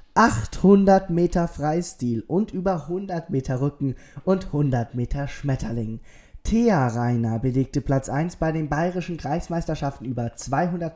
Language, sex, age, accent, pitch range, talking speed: German, male, 20-39, German, 125-160 Hz, 125 wpm